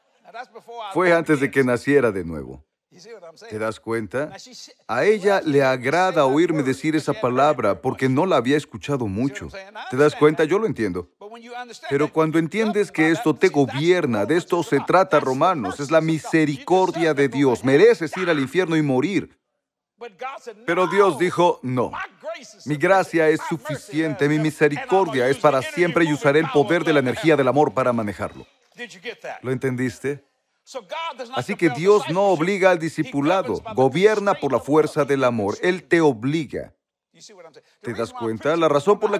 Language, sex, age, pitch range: Spanish, male, 40-59, 140-195 Hz